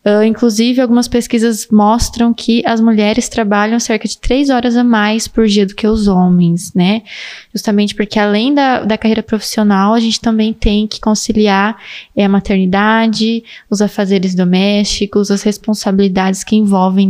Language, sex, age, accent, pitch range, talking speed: Portuguese, female, 20-39, Brazilian, 200-235 Hz, 160 wpm